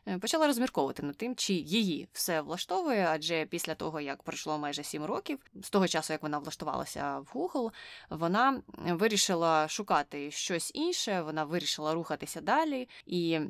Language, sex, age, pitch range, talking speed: Ukrainian, female, 20-39, 155-190 Hz, 150 wpm